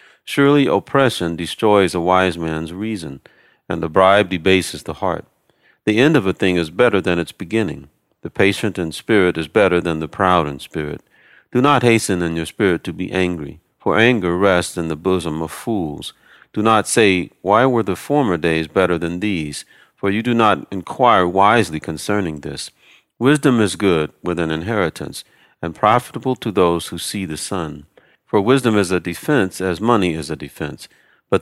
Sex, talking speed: male, 180 wpm